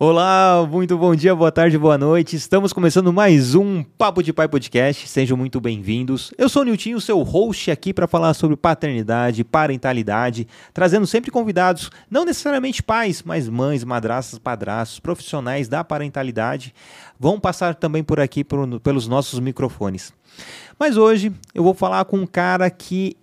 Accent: Brazilian